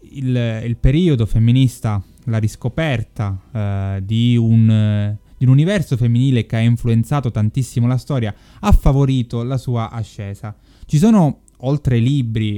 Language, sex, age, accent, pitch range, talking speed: Italian, male, 20-39, native, 110-140 Hz, 145 wpm